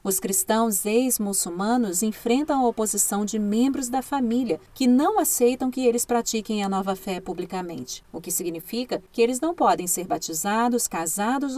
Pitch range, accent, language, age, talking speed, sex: 185-245 Hz, Brazilian, Portuguese, 40-59, 155 wpm, female